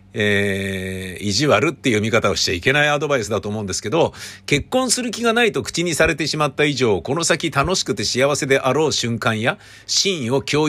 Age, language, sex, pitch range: 50-69, Japanese, male, 105-140 Hz